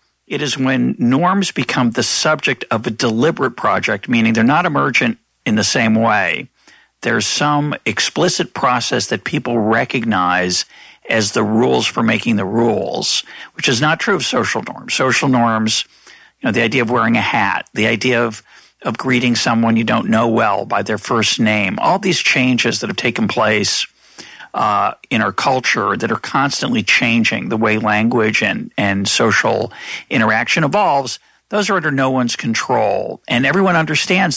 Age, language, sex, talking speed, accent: 60-79, English, male, 170 wpm, American